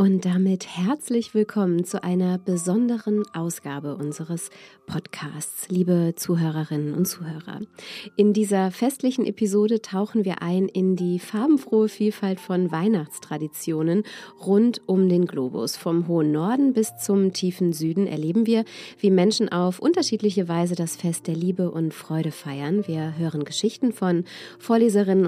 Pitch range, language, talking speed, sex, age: 160-210 Hz, German, 135 wpm, female, 30-49